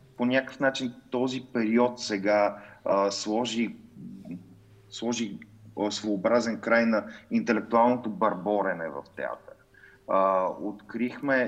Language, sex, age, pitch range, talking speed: Bulgarian, male, 30-49, 95-115 Hz, 85 wpm